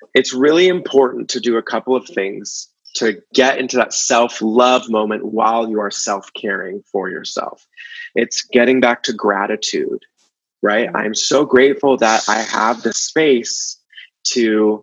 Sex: male